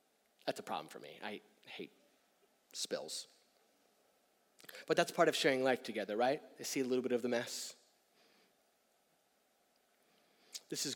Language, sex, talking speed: English, male, 140 wpm